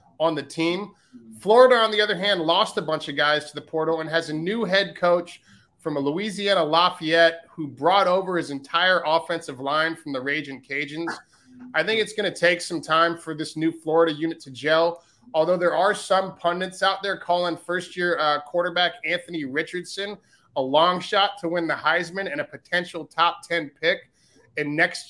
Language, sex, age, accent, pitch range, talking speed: English, male, 30-49, American, 155-185 Hz, 195 wpm